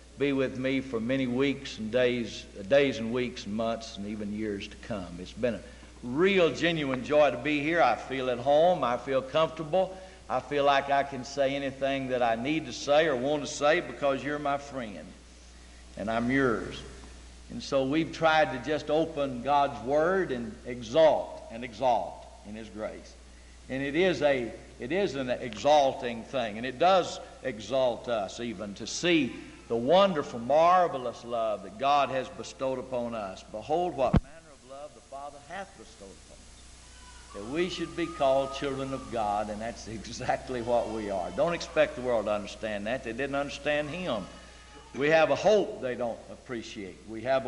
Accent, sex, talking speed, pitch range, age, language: American, male, 185 wpm, 110-150 Hz, 60-79, English